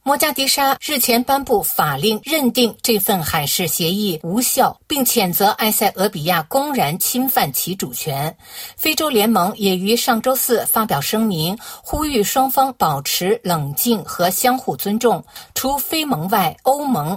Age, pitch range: 50-69, 175-255 Hz